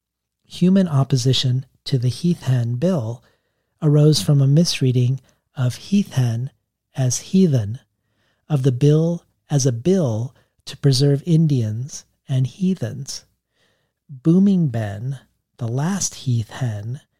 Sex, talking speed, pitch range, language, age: male, 115 wpm, 120-150 Hz, English, 40-59